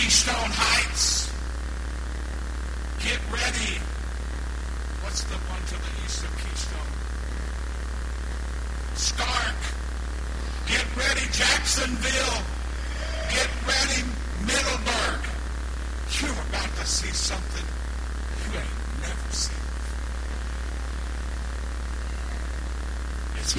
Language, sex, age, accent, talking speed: English, male, 60-79, American, 75 wpm